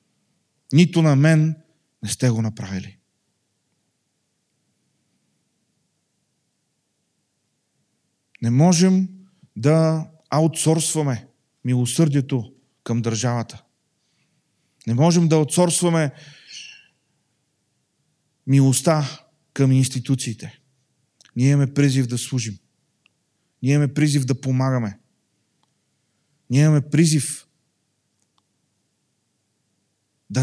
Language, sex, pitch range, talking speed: Bulgarian, male, 125-160 Hz, 70 wpm